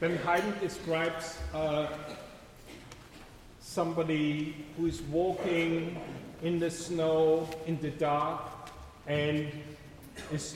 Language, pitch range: English, 145-165 Hz